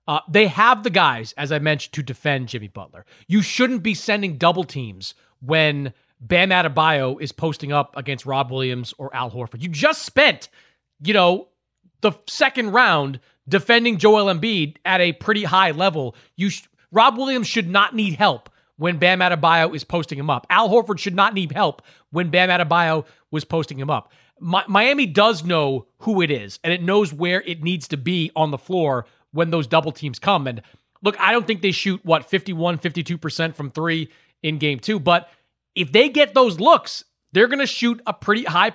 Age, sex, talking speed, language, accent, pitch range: 30-49, male, 195 wpm, English, American, 145-200 Hz